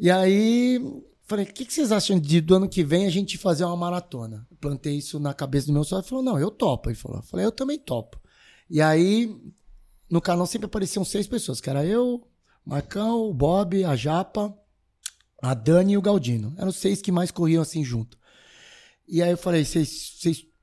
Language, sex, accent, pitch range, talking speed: Portuguese, male, Brazilian, 135-185 Hz, 200 wpm